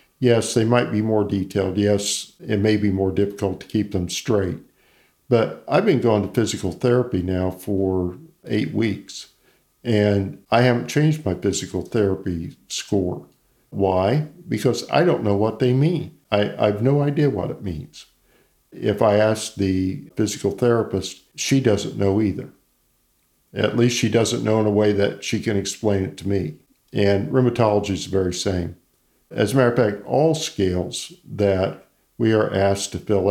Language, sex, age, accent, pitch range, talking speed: English, male, 50-69, American, 95-110 Hz, 170 wpm